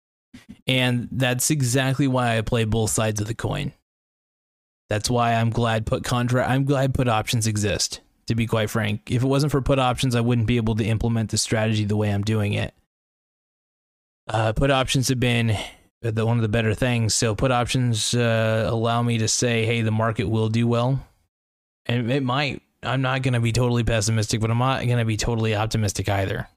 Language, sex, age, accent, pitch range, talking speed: English, male, 20-39, American, 110-130 Hz, 200 wpm